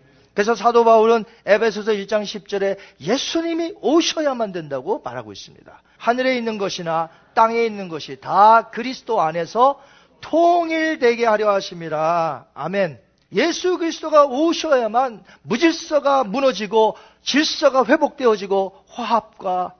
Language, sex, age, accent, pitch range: Korean, male, 40-59, native, 195-280 Hz